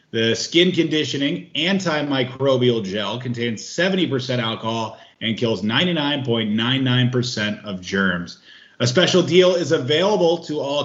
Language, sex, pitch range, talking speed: English, male, 115-150 Hz, 110 wpm